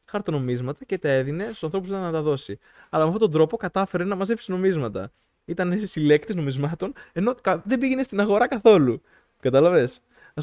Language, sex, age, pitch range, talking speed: Greek, male, 20-39, 130-195 Hz, 175 wpm